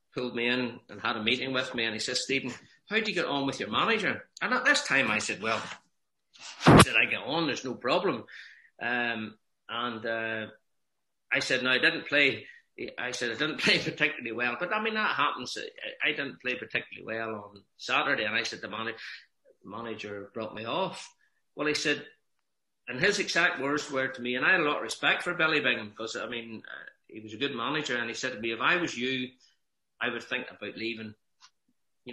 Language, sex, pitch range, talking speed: English, male, 115-145 Hz, 220 wpm